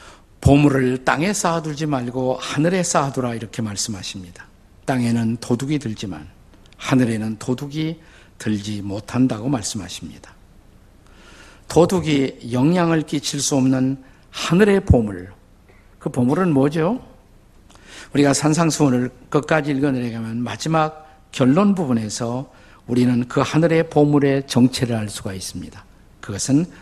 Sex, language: male, Korean